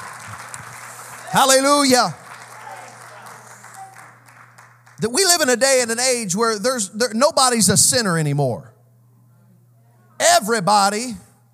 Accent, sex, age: American, male, 40-59